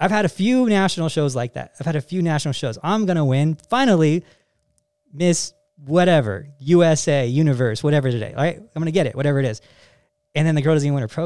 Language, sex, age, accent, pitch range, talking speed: English, male, 20-39, American, 140-185 Hz, 235 wpm